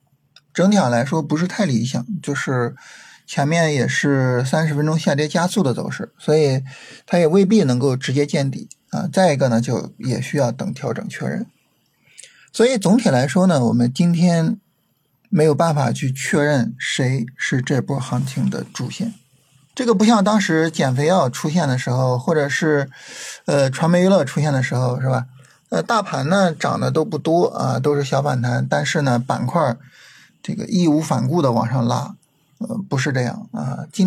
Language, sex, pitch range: Chinese, male, 130-175 Hz